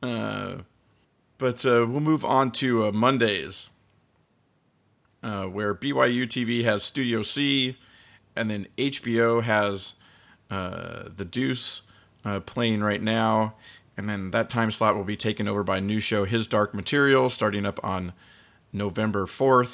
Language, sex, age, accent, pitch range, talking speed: English, male, 40-59, American, 100-115 Hz, 145 wpm